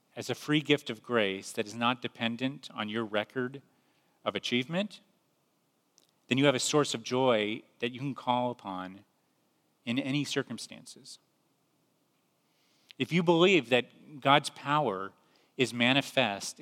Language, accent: English, American